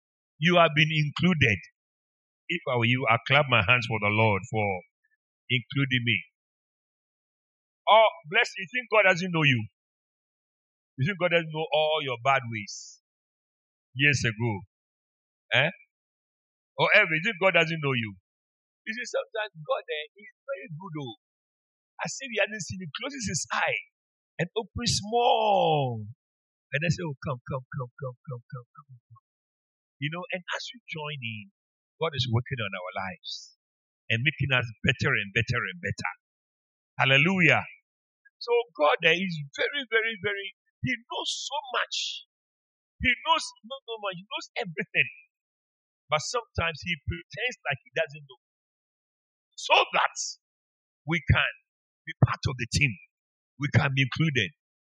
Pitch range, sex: 125-205 Hz, male